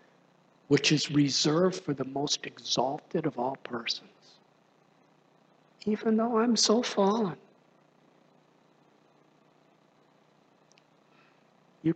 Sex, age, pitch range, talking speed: male, 60-79, 125-185 Hz, 80 wpm